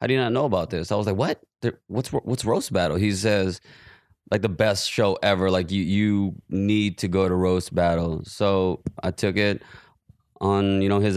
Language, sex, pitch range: English, male, 95-110 Hz